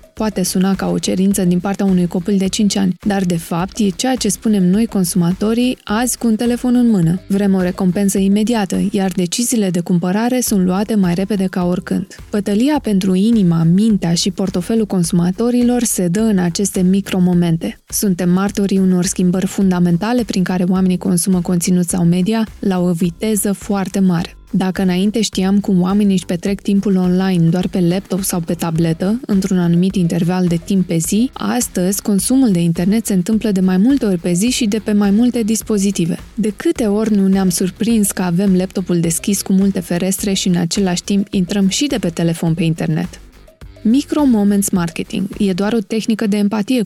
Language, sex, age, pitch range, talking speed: Romanian, female, 20-39, 180-215 Hz, 185 wpm